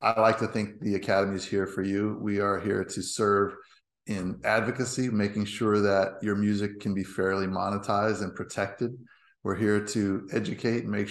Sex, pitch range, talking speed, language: male, 100-115 Hz, 185 wpm, English